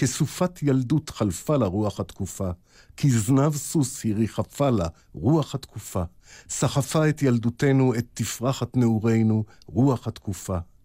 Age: 50-69